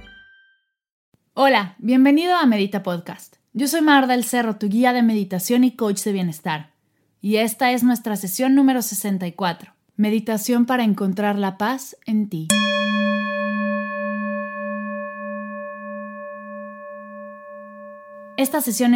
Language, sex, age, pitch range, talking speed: Spanish, female, 20-39, 180-245 Hz, 110 wpm